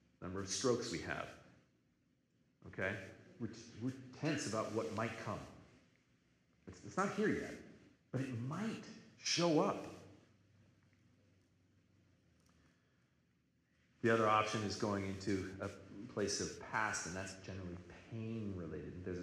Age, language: 40-59, English